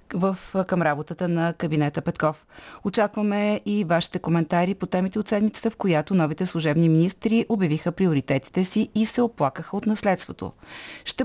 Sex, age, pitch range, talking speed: female, 30-49, 160-210 Hz, 150 wpm